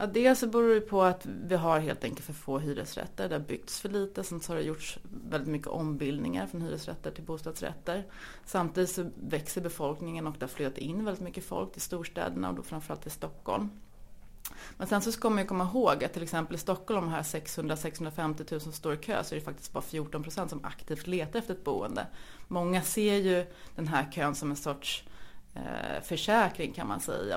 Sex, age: female, 30-49